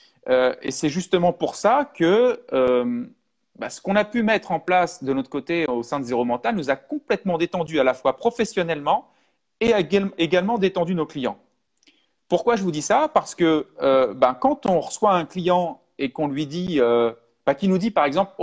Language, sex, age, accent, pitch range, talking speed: French, male, 40-59, French, 145-230 Hz, 210 wpm